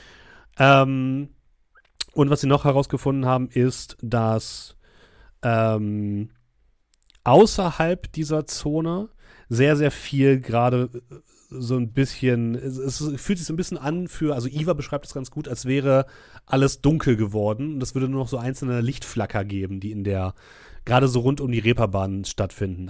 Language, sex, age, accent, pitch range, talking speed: German, male, 30-49, German, 115-145 Hz, 155 wpm